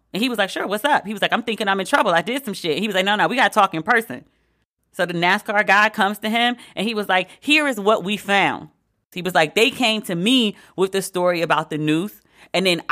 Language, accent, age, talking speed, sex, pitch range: English, American, 30-49, 290 wpm, female, 155-210 Hz